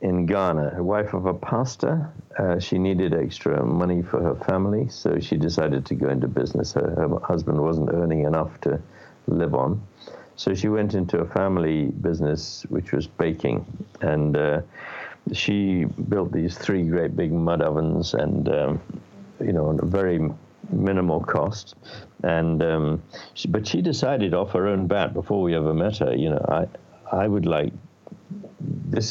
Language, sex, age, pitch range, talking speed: English, male, 60-79, 80-100 Hz, 170 wpm